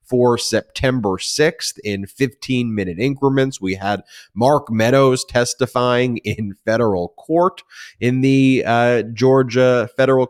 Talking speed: 110 wpm